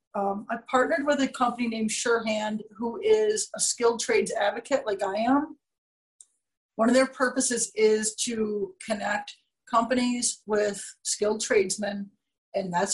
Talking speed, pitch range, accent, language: 140 wpm, 205-250 Hz, American, English